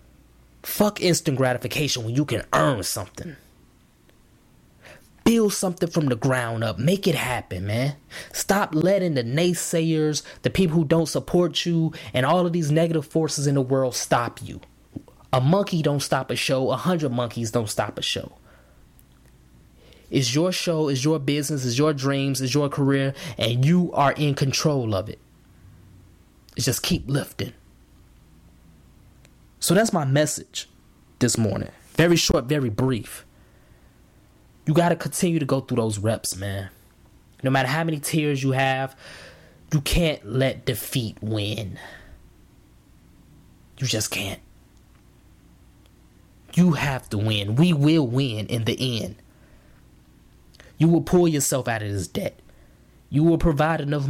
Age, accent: 20-39, American